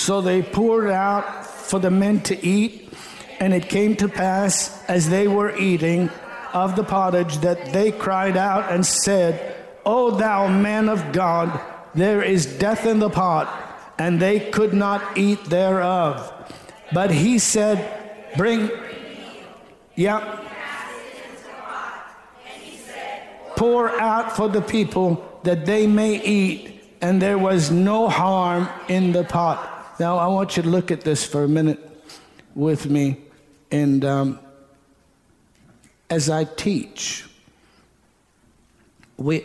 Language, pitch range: English, 155-205 Hz